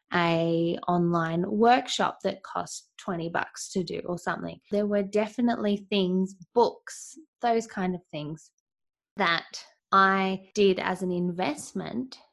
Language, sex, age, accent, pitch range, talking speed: English, female, 20-39, Australian, 180-240 Hz, 125 wpm